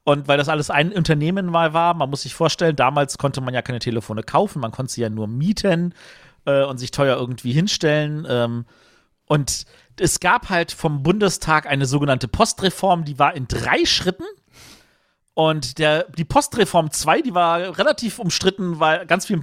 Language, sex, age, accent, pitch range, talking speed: German, male, 40-59, German, 135-175 Hz, 175 wpm